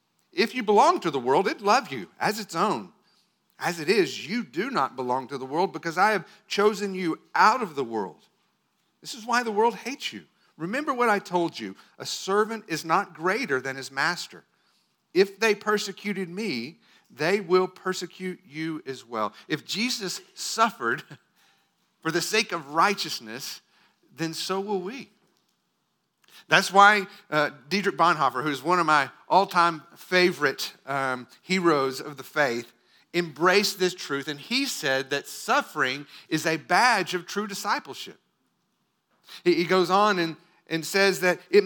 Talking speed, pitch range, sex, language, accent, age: 160 wpm, 160-205 Hz, male, English, American, 50-69